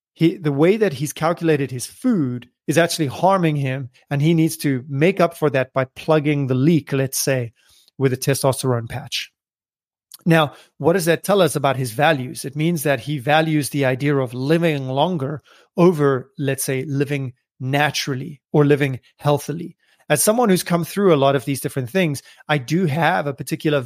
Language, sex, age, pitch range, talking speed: English, male, 30-49, 140-170 Hz, 185 wpm